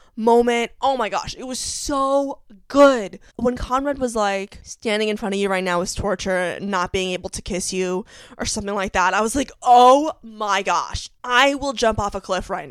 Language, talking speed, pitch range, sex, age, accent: English, 210 wpm, 185-240 Hz, female, 20-39, American